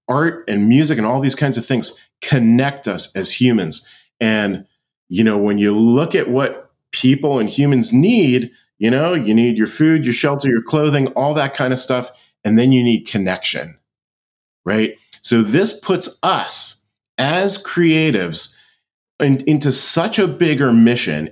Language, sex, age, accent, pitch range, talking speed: English, male, 40-59, American, 100-135 Hz, 160 wpm